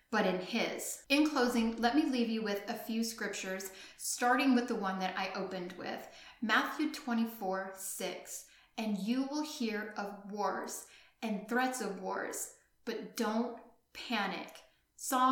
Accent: American